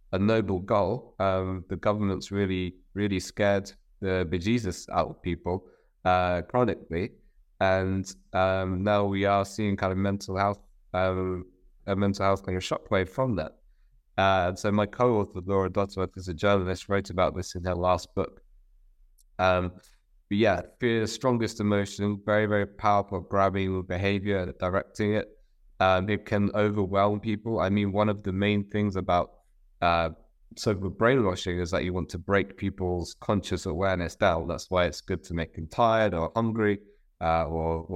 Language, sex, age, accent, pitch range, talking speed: English, male, 20-39, British, 90-105 Hz, 165 wpm